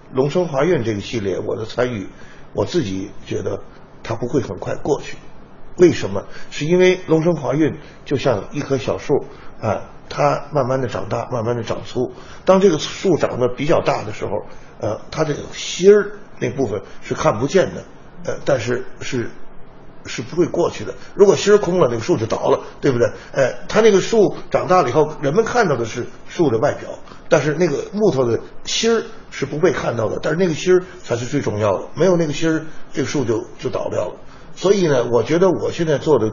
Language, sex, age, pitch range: Chinese, male, 50-69, 120-180 Hz